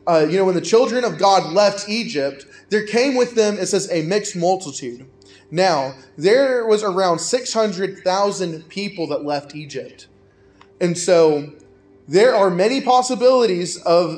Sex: male